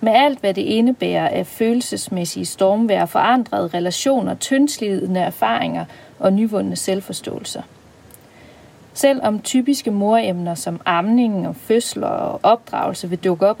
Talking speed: 125 wpm